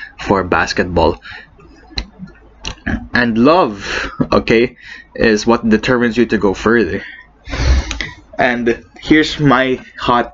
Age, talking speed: 20-39, 95 wpm